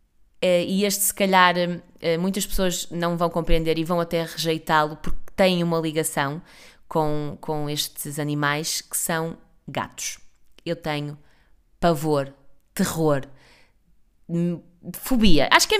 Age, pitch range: 20-39, 155-195 Hz